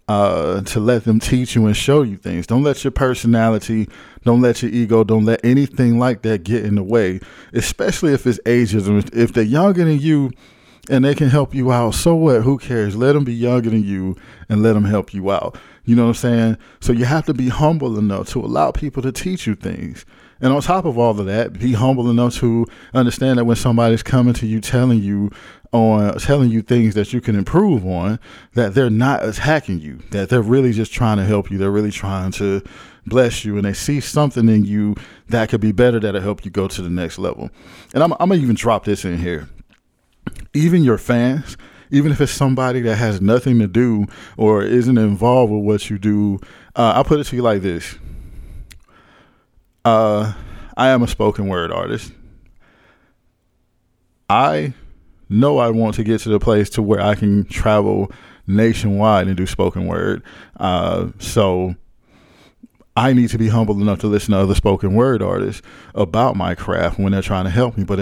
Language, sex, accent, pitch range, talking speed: English, male, American, 100-125 Hz, 205 wpm